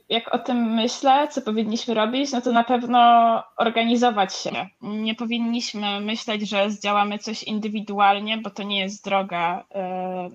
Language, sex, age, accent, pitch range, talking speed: Polish, female, 20-39, native, 200-235 Hz, 150 wpm